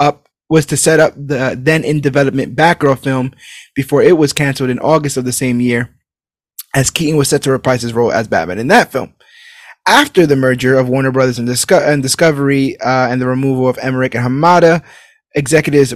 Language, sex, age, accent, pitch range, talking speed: English, male, 20-39, American, 125-150 Hz, 185 wpm